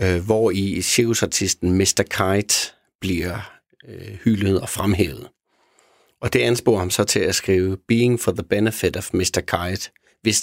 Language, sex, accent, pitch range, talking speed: Danish, male, native, 95-120 Hz, 150 wpm